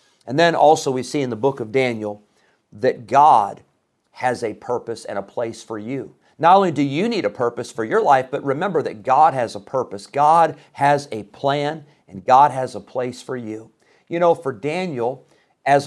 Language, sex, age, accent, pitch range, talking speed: English, male, 50-69, American, 120-150 Hz, 200 wpm